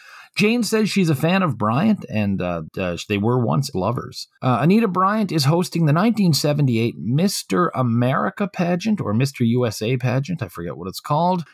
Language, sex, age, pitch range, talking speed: English, male, 40-59, 105-155 Hz, 170 wpm